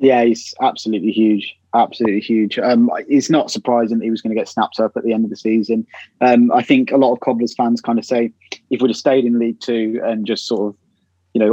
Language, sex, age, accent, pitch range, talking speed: English, male, 20-39, British, 110-120 Hz, 250 wpm